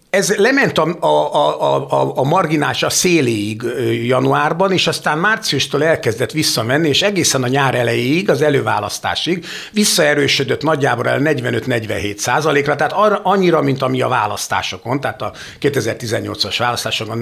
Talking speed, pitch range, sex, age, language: 130 wpm, 120-180 Hz, male, 60-79, Hungarian